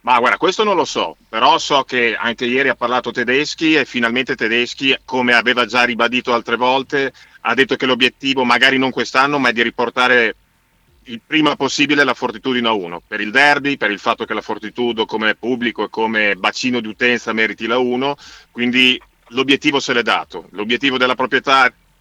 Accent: native